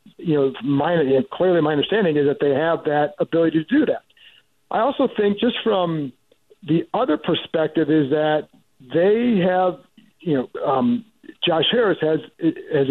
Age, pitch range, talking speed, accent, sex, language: 50-69, 150-180 Hz, 160 wpm, American, male, English